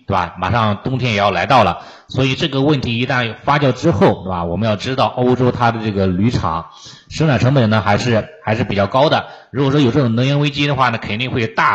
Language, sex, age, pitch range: Chinese, male, 30-49, 95-125 Hz